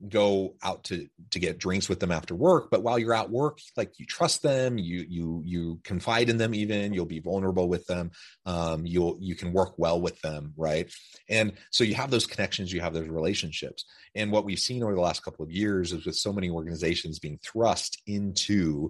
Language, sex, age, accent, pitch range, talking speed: English, male, 30-49, American, 85-105 Hz, 215 wpm